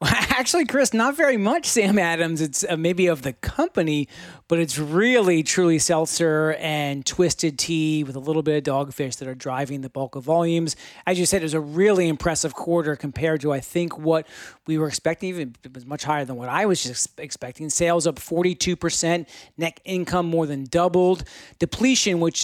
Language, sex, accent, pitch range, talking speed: English, male, American, 145-175 Hz, 195 wpm